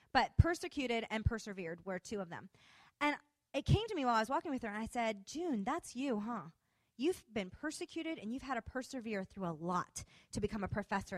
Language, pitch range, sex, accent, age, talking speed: English, 180-255 Hz, female, American, 30-49, 220 wpm